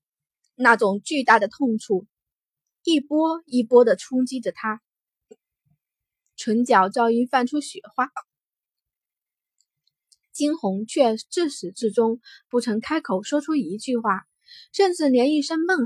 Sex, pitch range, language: female, 210-275 Hz, Chinese